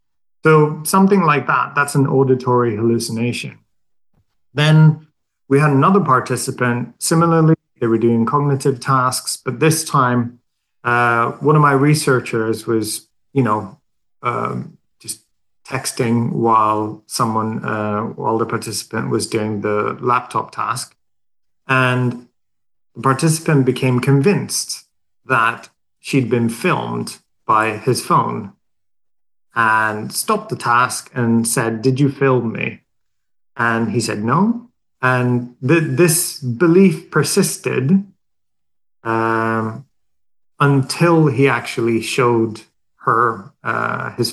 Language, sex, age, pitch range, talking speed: English, male, 30-49, 115-150 Hz, 110 wpm